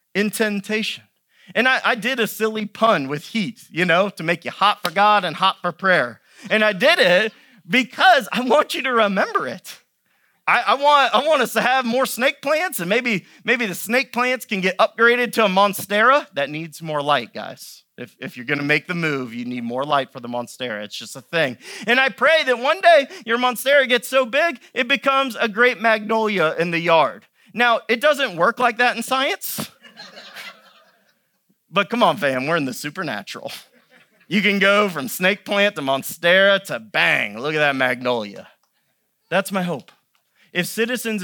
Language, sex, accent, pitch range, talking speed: English, male, American, 155-235 Hz, 195 wpm